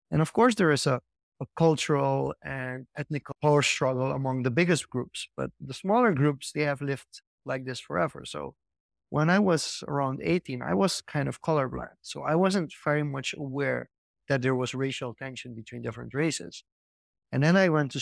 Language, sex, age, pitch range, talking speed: English, male, 30-49, 130-160 Hz, 185 wpm